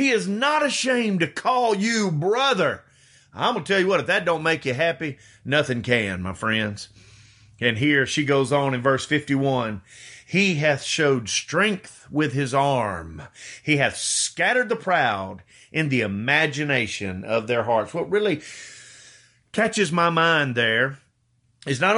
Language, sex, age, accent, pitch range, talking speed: English, male, 40-59, American, 120-170 Hz, 160 wpm